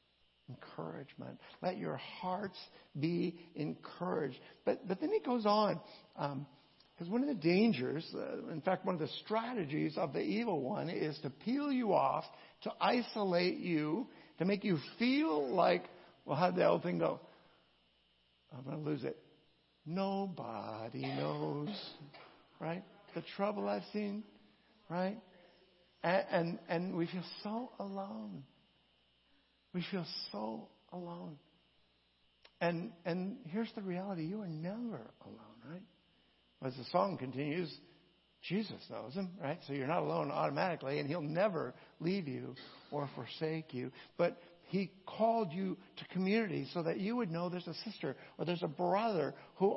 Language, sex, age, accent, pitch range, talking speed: English, male, 60-79, American, 150-195 Hz, 155 wpm